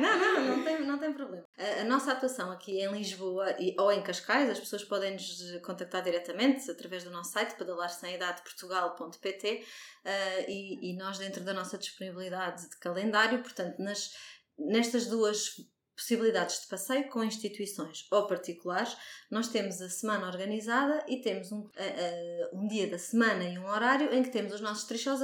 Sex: female